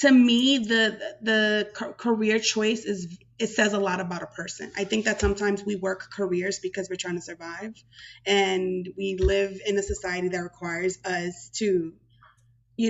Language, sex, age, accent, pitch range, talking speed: English, female, 20-39, American, 185-215 Hz, 175 wpm